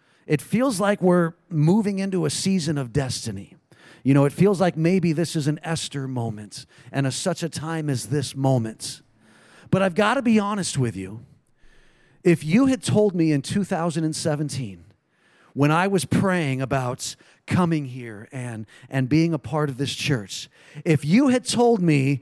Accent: American